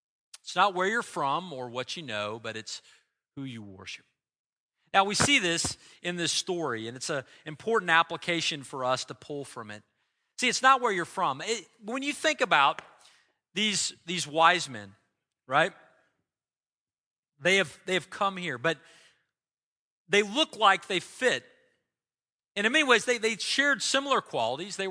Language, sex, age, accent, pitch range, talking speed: English, male, 40-59, American, 155-215 Hz, 170 wpm